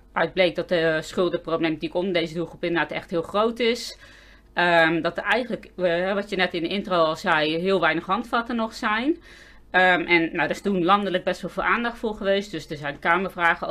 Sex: female